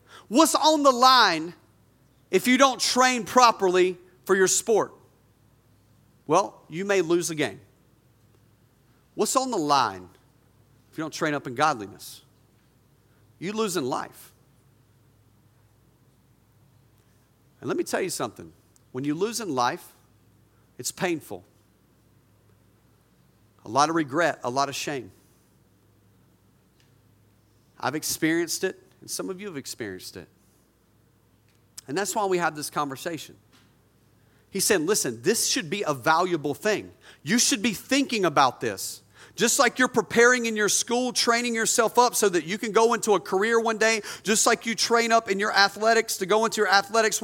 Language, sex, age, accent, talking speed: English, male, 40-59, American, 150 wpm